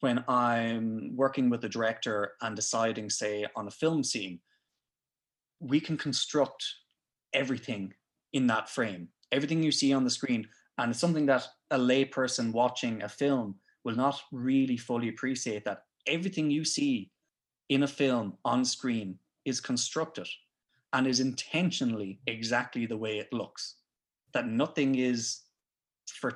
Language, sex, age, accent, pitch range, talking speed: English, male, 20-39, Irish, 115-140 Hz, 145 wpm